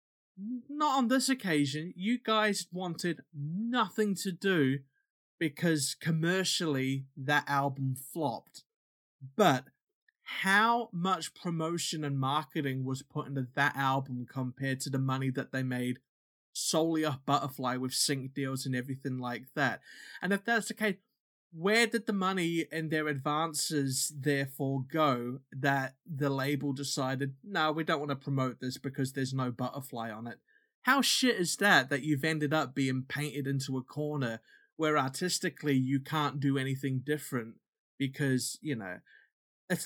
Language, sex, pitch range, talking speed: English, male, 135-190 Hz, 150 wpm